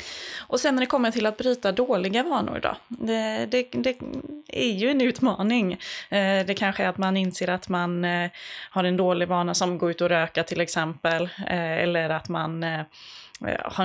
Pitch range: 170-210 Hz